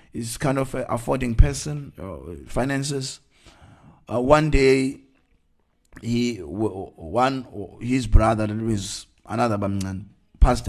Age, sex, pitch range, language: 30-49, male, 105-135 Hz, English